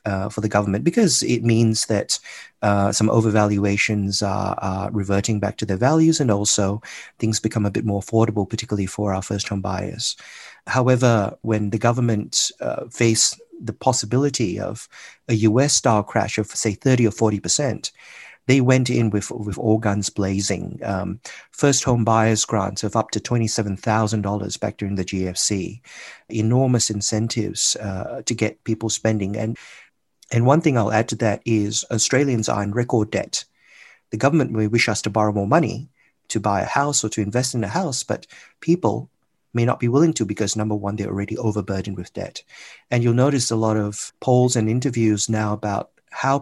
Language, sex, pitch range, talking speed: English, male, 105-120 Hz, 175 wpm